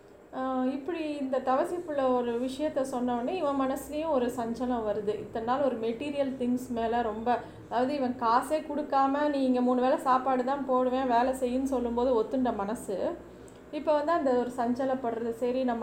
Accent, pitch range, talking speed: native, 215-265 Hz, 150 wpm